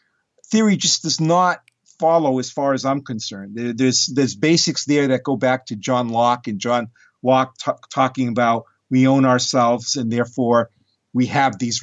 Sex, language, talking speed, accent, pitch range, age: male, English, 165 wpm, American, 125-160 Hz, 50-69